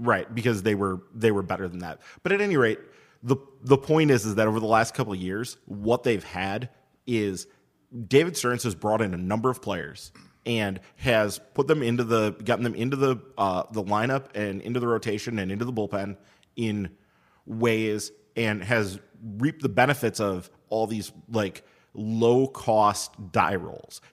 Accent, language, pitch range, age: American, English, 100-125 Hz, 30-49